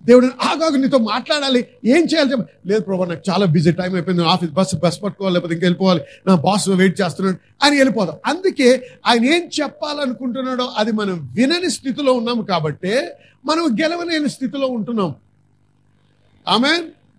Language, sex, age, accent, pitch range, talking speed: Telugu, male, 50-69, native, 180-275 Hz, 140 wpm